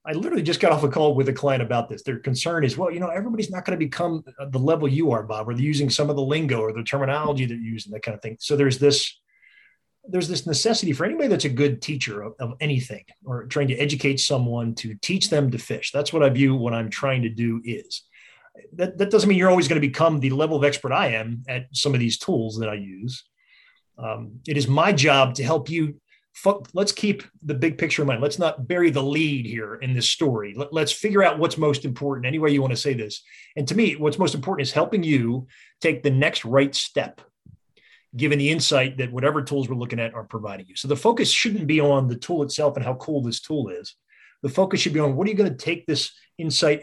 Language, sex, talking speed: English, male, 250 wpm